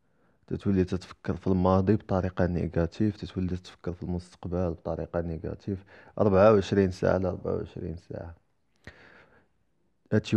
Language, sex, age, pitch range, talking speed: Arabic, male, 20-39, 90-105 Hz, 105 wpm